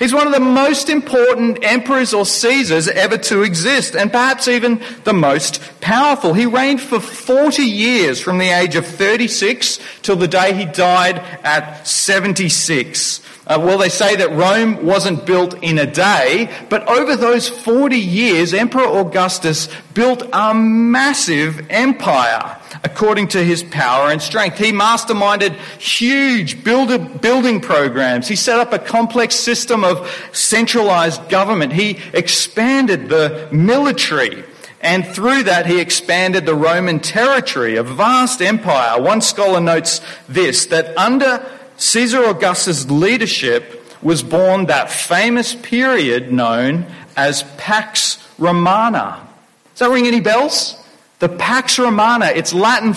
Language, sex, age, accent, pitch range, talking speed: English, male, 40-59, Australian, 170-240 Hz, 135 wpm